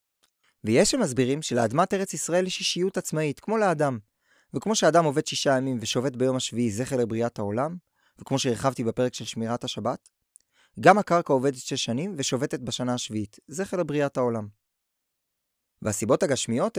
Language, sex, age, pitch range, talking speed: Hebrew, male, 20-39, 120-160 Hz, 145 wpm